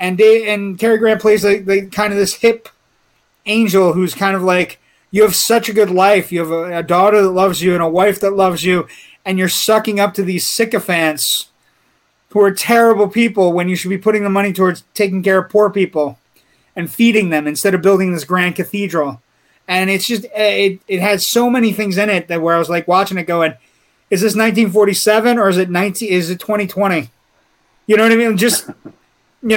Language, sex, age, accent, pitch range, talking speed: English, male, 30-49, American, 185-215 Hz, 215 wpm